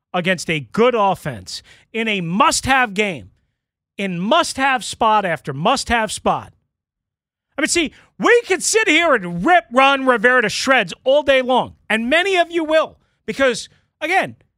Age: 40-59